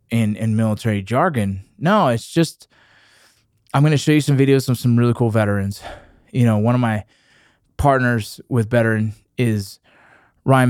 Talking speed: 155 wpm